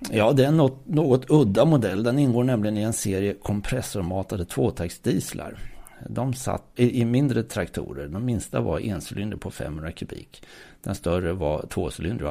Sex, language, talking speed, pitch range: male, Swedish, 145 wpm, 85-115 Hz